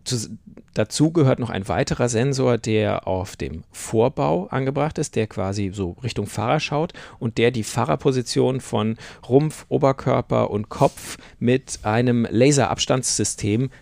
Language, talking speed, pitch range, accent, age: German, 130 wpm, 110-135 Hz, German, 40-59